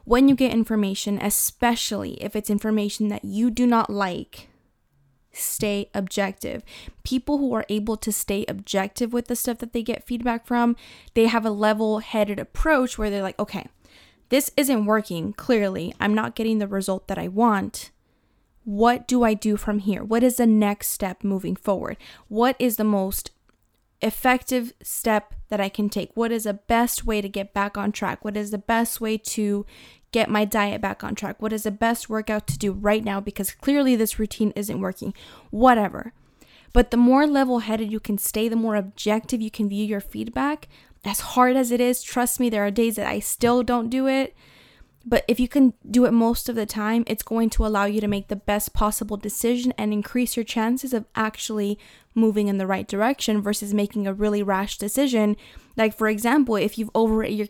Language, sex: English, female